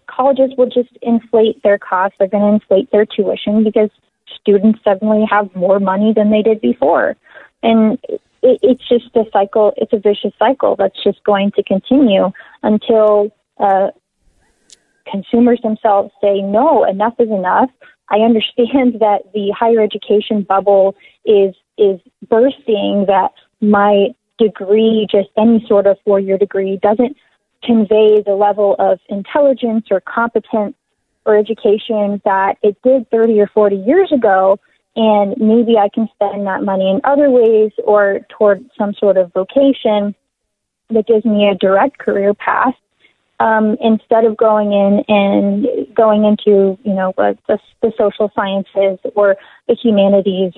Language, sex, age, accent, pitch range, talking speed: English, female, 20-39, American, 200-230 Hz, 145 wpm